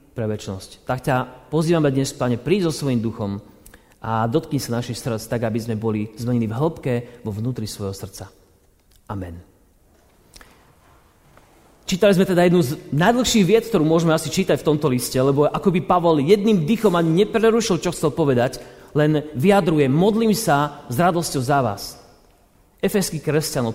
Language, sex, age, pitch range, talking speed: Slovak, male, 30-49, 135-185 Hz, 155 wpm